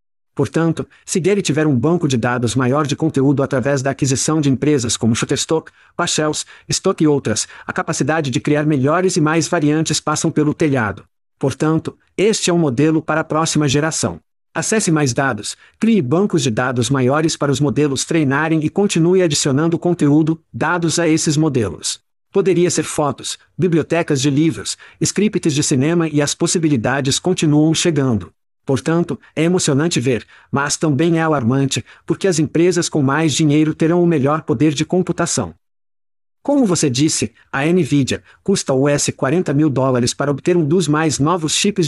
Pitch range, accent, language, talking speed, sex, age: 140-170 Hz, Brazilian, Portuguese, 165 wpm, male, 50-69